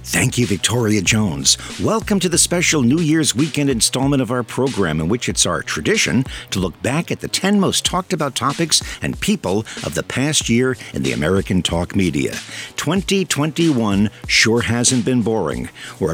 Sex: male